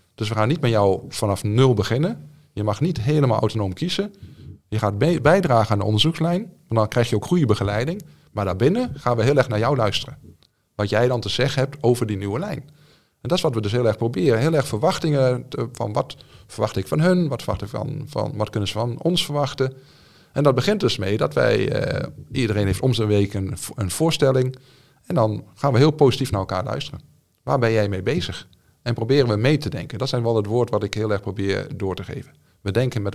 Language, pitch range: Dutch, 105-140 Hz